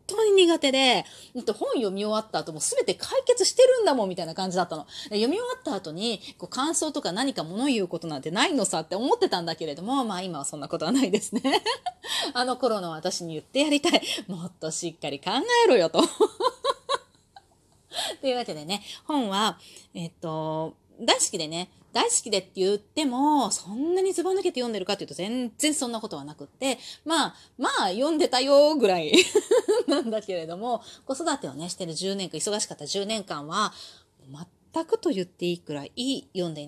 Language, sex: Japanese, female